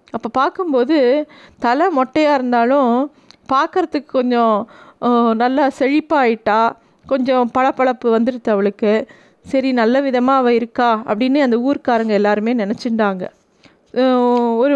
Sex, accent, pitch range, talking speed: female, native, 230-275 Hz, 100 wpm